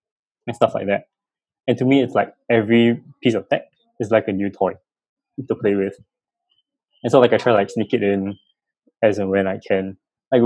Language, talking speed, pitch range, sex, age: English, 205 wpm, 100-150 Hz, male, 20-39